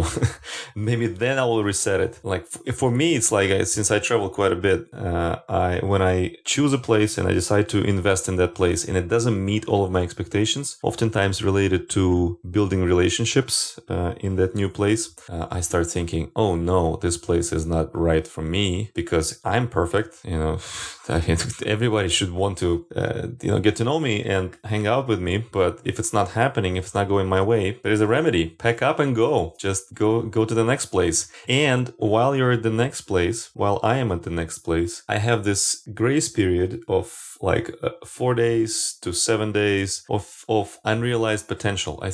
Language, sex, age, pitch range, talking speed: English, male, 30-49, 90-115 Hz, 200 wpm